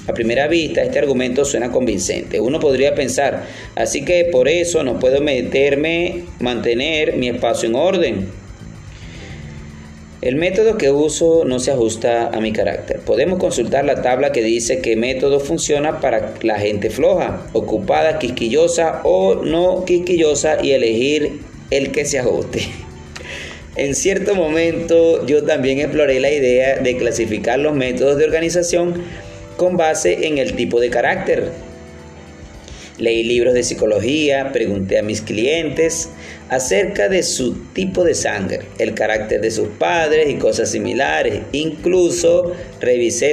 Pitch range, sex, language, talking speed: 115-175 Hz, male, Spanish, 140 wpm